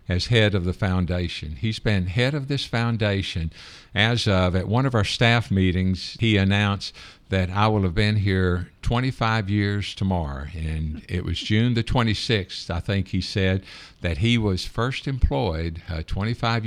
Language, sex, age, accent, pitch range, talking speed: English, male, 60-79, American, 90-110 Hz, 170 wpm